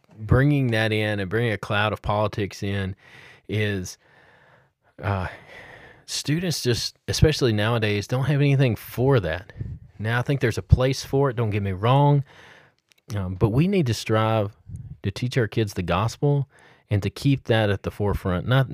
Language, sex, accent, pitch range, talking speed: English, male, American, 100-125 Hz, 170 wpm